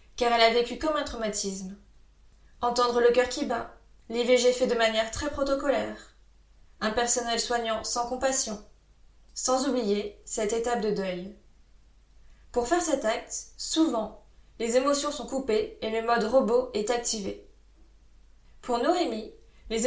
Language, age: French, 20-39